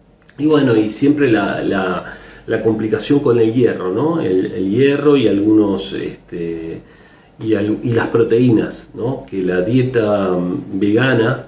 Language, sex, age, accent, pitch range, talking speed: Spanish, male, 40-59, Argentinian, 95-125 Hz, 145 wpm